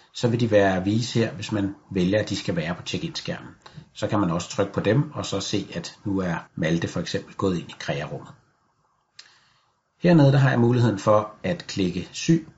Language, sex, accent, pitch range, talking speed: Danish, male, native, 95-125 Hz, 215 wpm